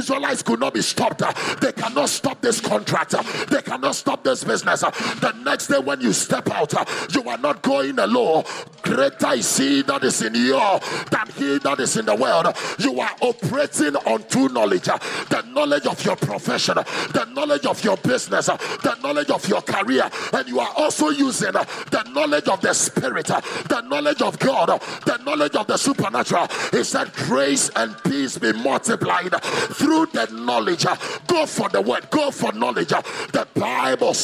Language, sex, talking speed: English, male, 175 wpm